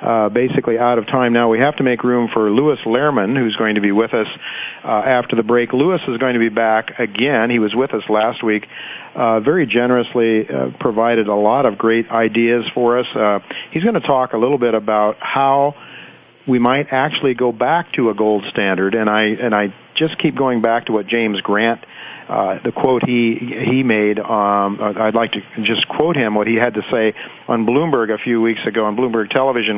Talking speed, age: 215 wpm, 50-69